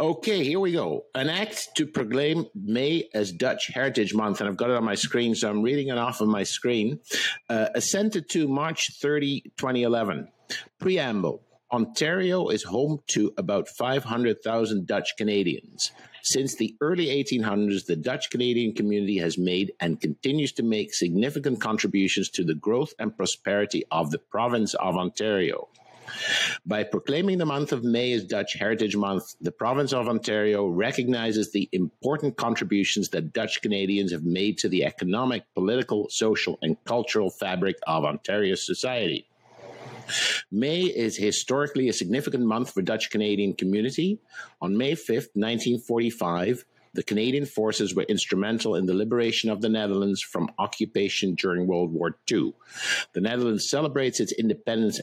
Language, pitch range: English, 100-135 Hz